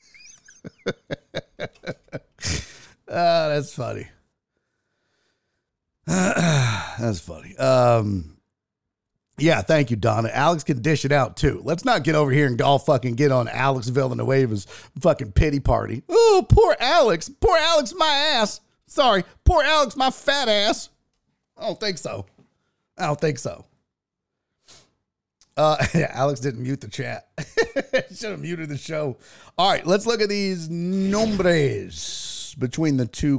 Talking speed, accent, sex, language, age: 140 wpm, American, male, English, 50-69